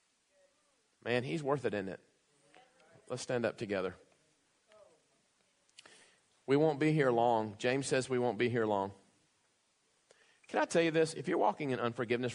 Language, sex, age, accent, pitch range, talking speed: English, male, 40-59, American, 120-155 Hz, 155 wpm